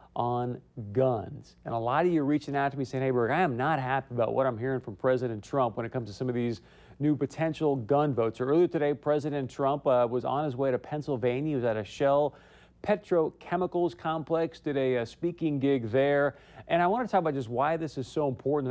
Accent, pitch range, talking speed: American, 125-155 Hz, 235 wpm